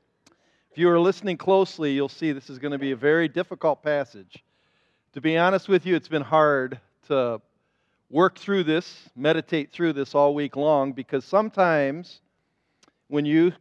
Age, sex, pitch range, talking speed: 40-59, male, 140-185 Hz, 170 wpm